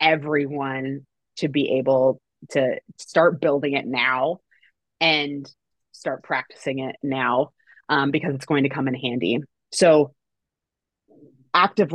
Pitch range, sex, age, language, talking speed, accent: 140-160 Hz, female, 30-49, English, 120 wpm, American